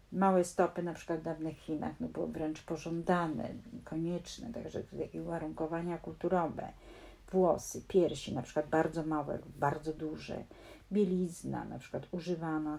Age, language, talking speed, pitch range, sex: 50-69, Polish, 130 wpm, 155-180 Hz, female